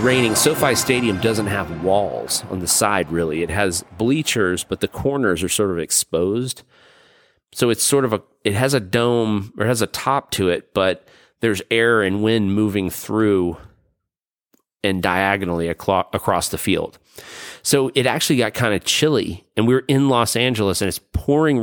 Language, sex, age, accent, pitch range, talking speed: English, male, 30-49, American, 100-130 Hz, 170 wpm